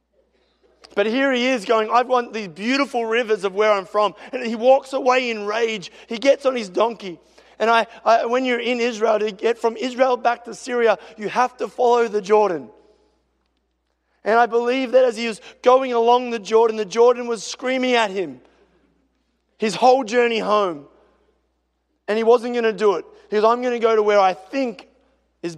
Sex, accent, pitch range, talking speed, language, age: male, Australian, 195-235 Hz, 195 wpm, English, 20-39